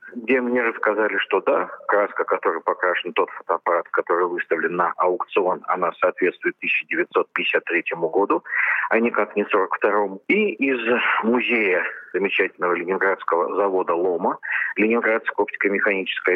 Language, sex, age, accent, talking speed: Russian, male, 40-59, native, 120 wpm